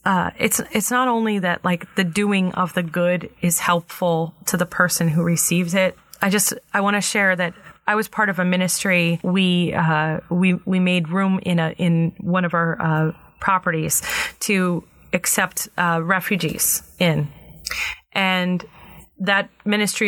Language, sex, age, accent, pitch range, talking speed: English, female, 30-49, American, 170-190 Hz, 160 wpm